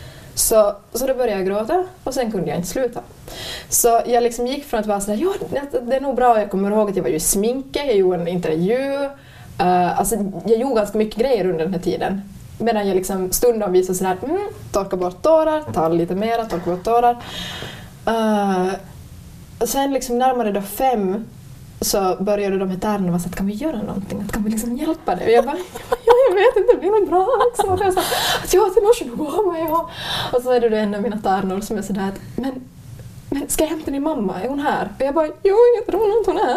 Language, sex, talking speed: Swedish, female, 225 wpm